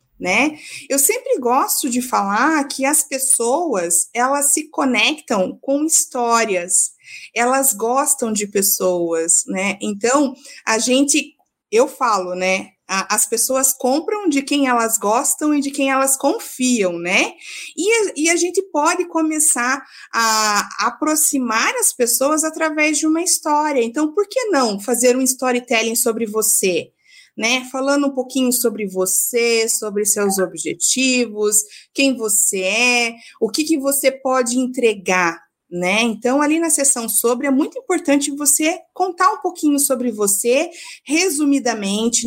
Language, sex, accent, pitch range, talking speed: Portuguese, female, Brazilian, 225-290 Hz, 135 wpm